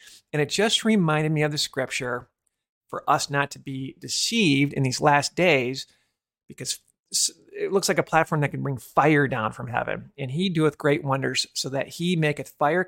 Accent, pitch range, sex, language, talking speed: American, 130-155 Hz, male, English, 190 wpm